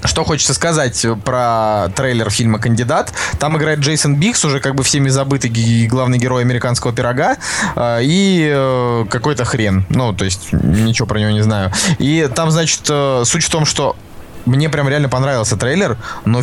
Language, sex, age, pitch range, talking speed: Russian, male, 20-39, 110-145 Hz, 160 wpm